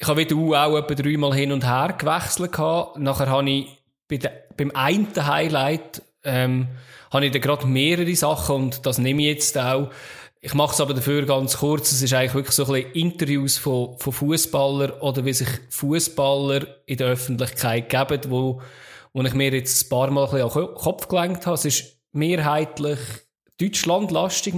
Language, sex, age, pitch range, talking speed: German, male, 20-39, 130-150 Hz, 175 wpm